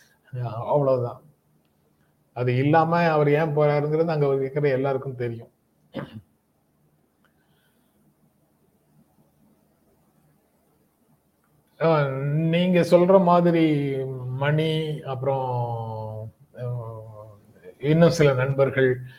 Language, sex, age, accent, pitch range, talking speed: Tamil, male, 30-49, native, 125-150 Hz, 35 wpm